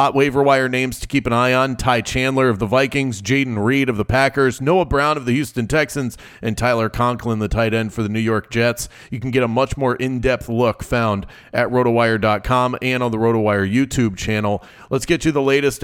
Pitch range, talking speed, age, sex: 115-140 Hz, 220 wpm, 30-49, male